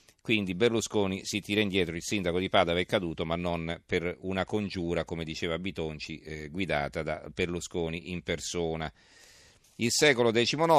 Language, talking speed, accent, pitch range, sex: Italian, 155 wpm, native, 85-110 Hz, male